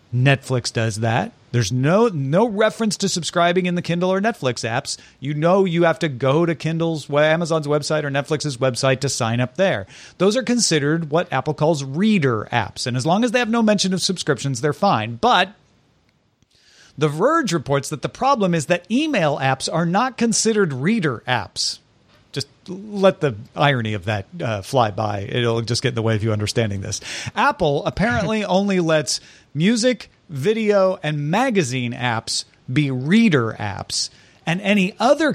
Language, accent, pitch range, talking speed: English, American, 130-200 Hz, 175 wpm